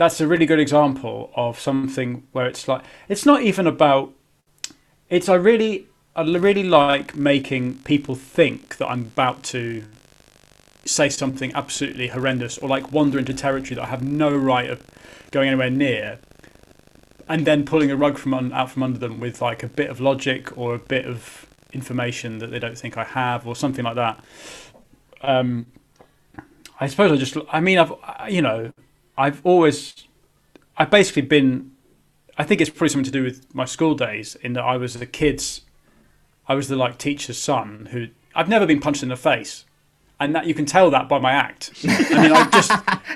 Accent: British